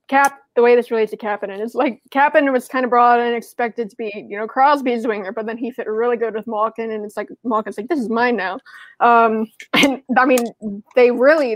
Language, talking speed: English, 235 wpm